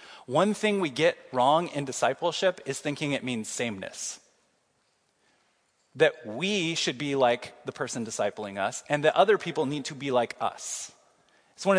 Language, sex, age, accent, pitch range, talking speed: English, male, 30-49, American, 130-170 Hz, 165 wpm